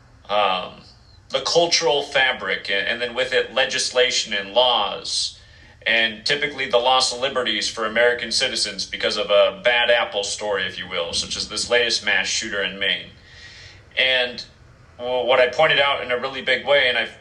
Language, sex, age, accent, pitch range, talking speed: English, male, 40-59, American, 105-130 Hz, 170 wpm